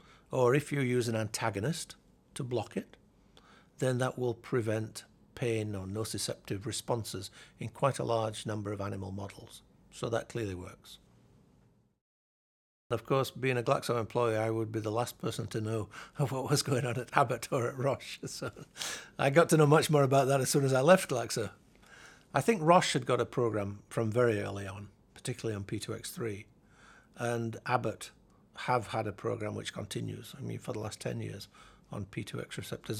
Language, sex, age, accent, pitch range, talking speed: English, male, 60-79, British, 105-130 Hz, 180 wpm